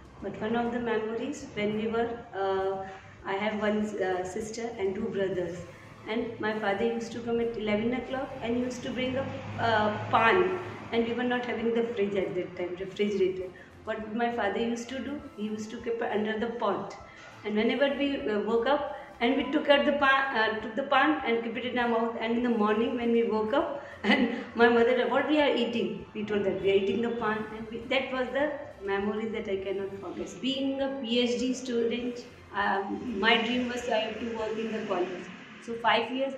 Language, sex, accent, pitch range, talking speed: Hindi, female, native, 200-240 Hz, 220 wpm